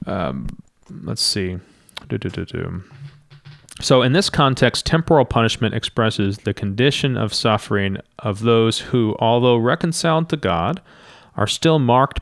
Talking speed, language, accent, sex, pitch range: 120 wpm, English, American, male, 100-125 Hz